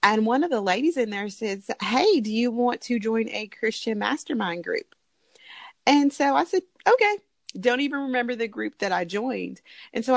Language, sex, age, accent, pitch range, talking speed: English, female, 30-49, American, 215-285 Hz, 195 wpm